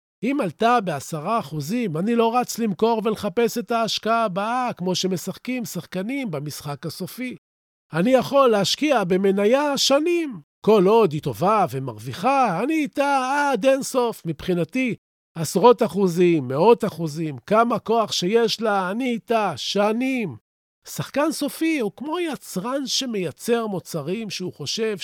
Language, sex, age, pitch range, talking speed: Hebrew, male, 40-59, 170-240 Hz, 125 wpm